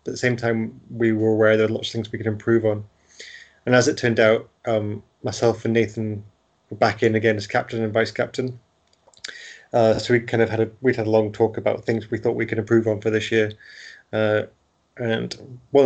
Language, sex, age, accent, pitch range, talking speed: English, male, 20-39, British, 110-120 Hz, 215 wpm